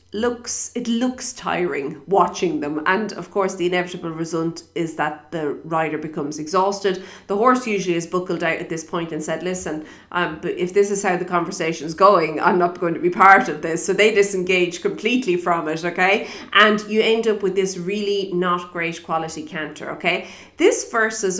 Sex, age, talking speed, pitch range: female, 30-49, 195 wpm, 175-225 Hz